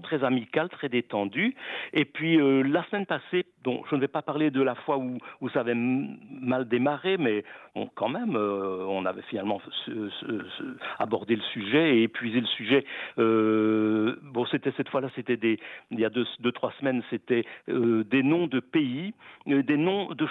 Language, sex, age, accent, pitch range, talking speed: French, male, 50-69, French, 120-160 Hz, 200 wpm